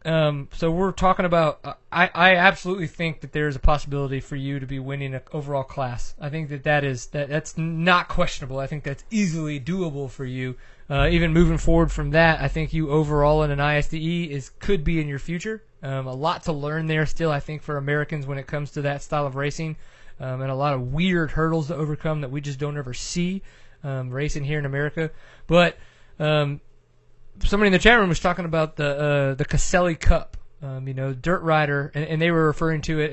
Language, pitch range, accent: English, 140-165 Hz, American